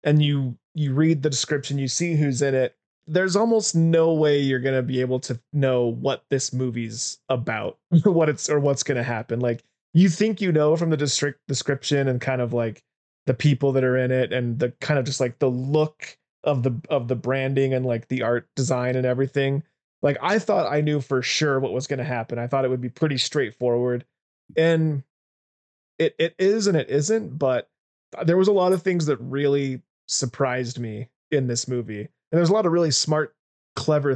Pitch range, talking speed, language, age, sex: 125-155 Hz, 205 wpm, English, 20-39, male